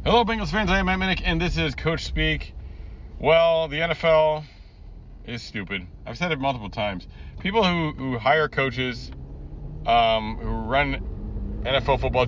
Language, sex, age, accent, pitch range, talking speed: English, male, 30-49, American, 75-115 Hz, 155 wpm